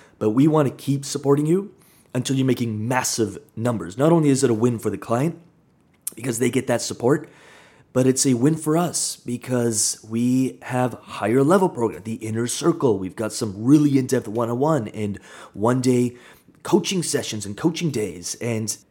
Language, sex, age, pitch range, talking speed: English, male, 30-49, 115-140 Hz, 175 wpm